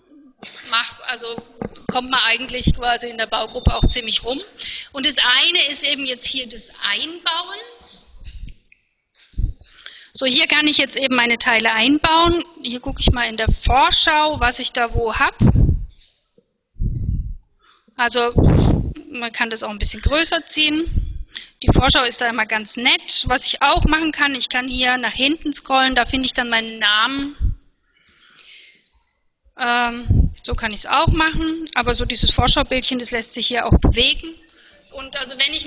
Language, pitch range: German, 235-295 Hz